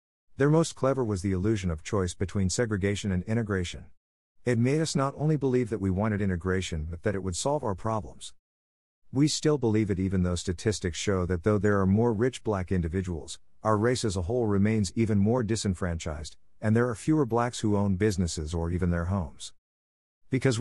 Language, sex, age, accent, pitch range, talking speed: English, male, 50-69, American, 90-115 Hz, 195 wpm